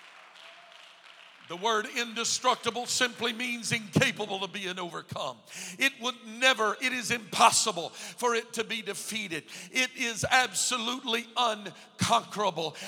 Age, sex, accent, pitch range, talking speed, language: 50-69, male, American, 200-235 Hz, 110 wpm, English